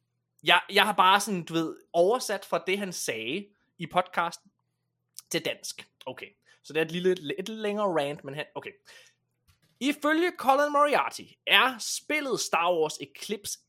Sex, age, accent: male, 20-39, native